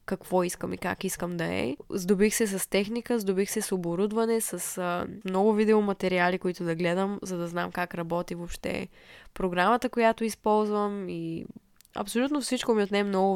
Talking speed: 160 wpm